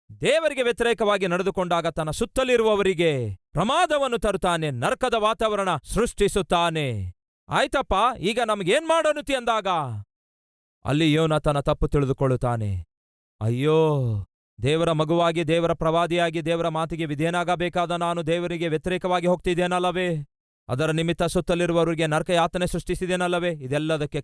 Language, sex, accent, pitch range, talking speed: Kannada, male, native, 125-180 Hz, 95 wpm